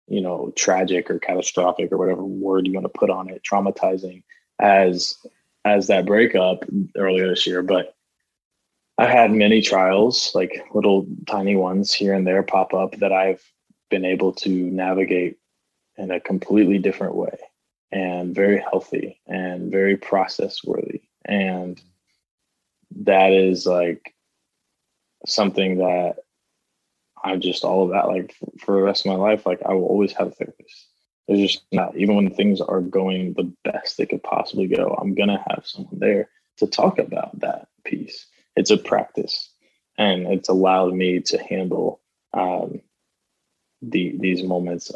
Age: 20-39